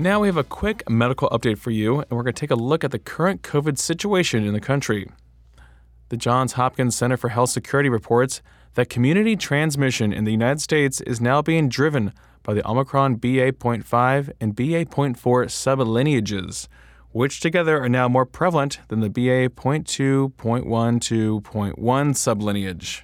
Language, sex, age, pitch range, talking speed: English, male, 20-39, 110-135 Hz, 155 wpm